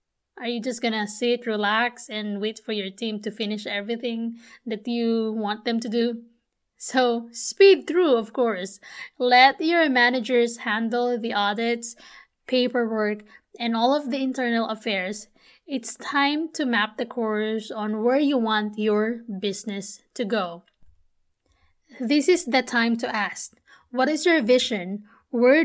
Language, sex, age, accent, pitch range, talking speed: English, female, 20-39, Filipino, 215-250 Hz, 145 wpm